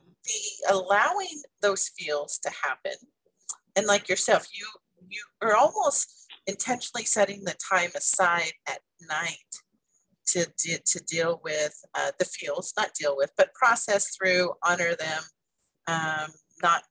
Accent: American